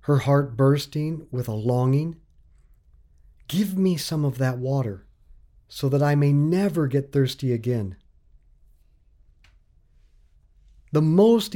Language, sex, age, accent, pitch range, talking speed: English, male, 50-69, American, 110-170 Hz, 115 wpm